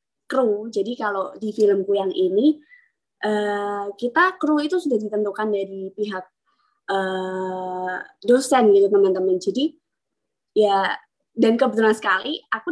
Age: 20-39